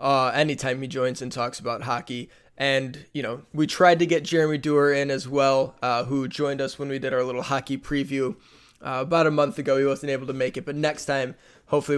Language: English